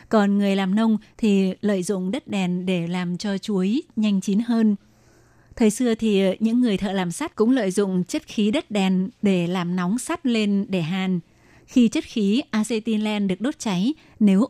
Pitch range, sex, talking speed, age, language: 190-225 Hz, female, 190 wpm, 20-39, Vietnamese